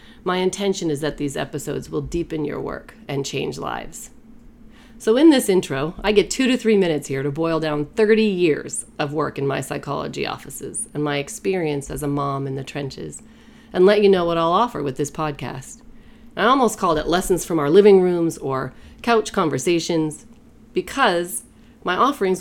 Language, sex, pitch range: English, female, 145-200 Hz